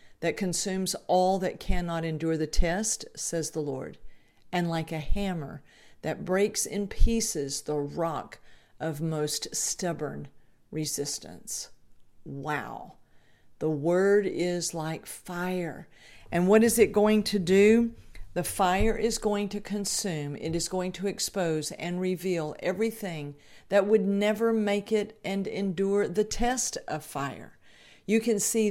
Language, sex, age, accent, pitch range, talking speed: English, female, 50-69, American, 160-200 Hz, 140 wpm